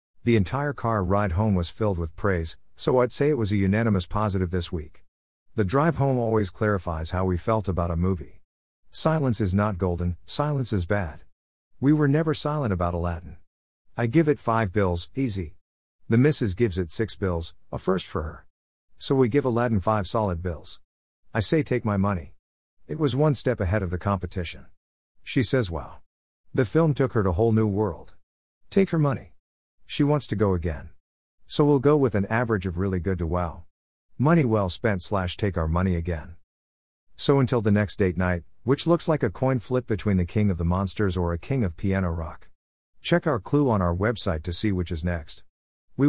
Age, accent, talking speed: 50-69, American, 200 wpm